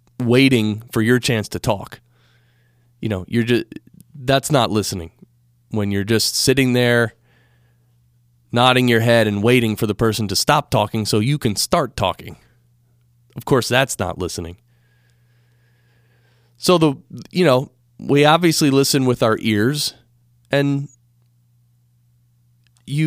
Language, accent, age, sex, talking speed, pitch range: English, American, 30-49, male, 135 wpm, 110-135 Hz